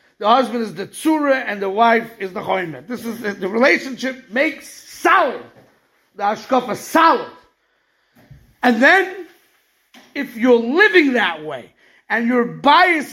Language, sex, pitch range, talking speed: English, male, 230-300 Hz, 135 wpm